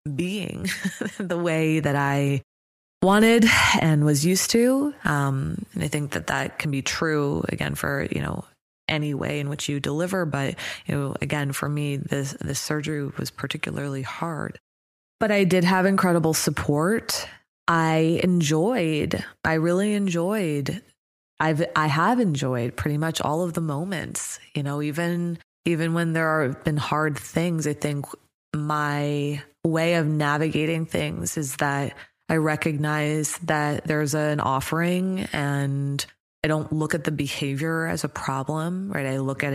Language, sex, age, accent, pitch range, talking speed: English, female, 20-39, American, 140-165 Hz, 155 wpm